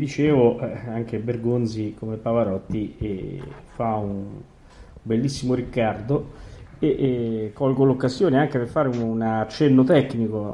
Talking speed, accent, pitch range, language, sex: 120 wpm, native, 110-140 Hz, Italian, male